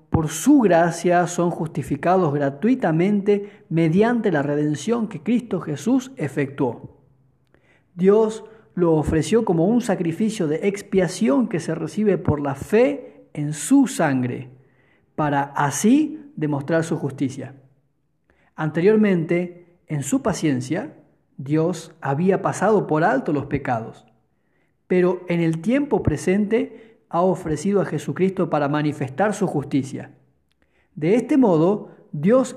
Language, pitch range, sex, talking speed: Spanish, 145-205 Hz, male, 115 wpm